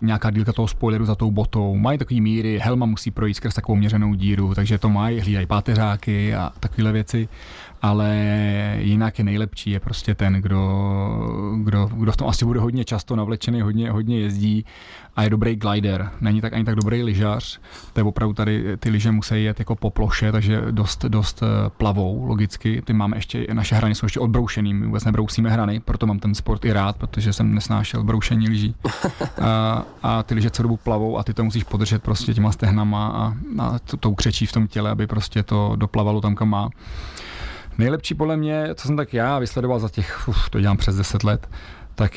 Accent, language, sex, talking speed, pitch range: native, Czech, male, 200 wpm, 105-115 Hz